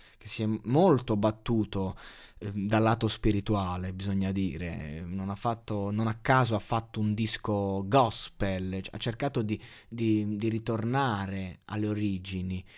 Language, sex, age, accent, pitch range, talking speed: Italian, male, 20-39, native, 95-115 Hz, 145 wpm